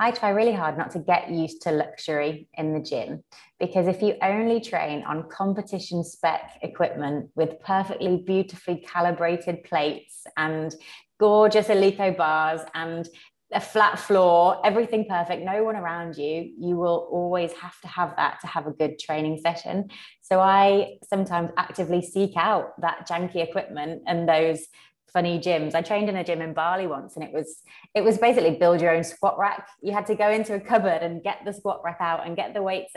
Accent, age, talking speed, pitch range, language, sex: British, 20-39, 185 wpm, 165-200 Hz, English, female